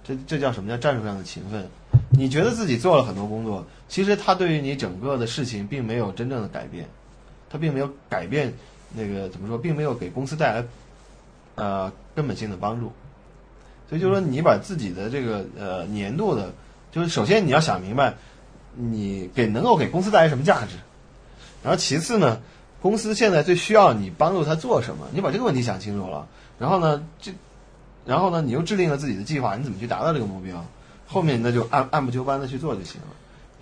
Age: 20-39